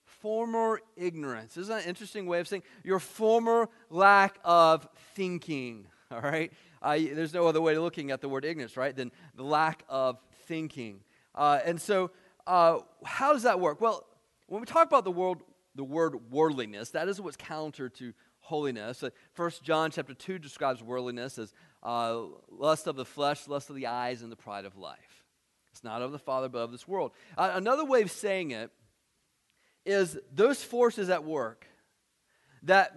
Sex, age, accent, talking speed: male, 30-49, American, 180 wpm